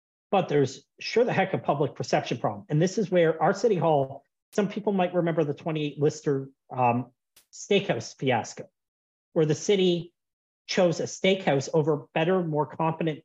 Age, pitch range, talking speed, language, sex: 40-59, 140-175 Hz, 165 wpm, English, male